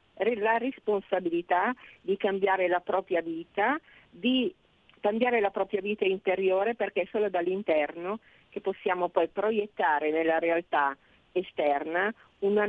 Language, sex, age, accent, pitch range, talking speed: Italian, female, 40-59, native, 170-220 Hz, 120 wpm